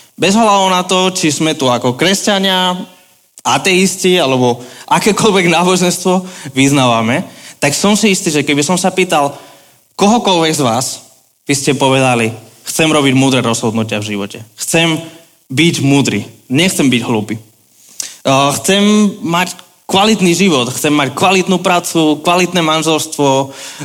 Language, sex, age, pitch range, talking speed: Slovak, male, 20-39, 125-170 Hz, 130 wpm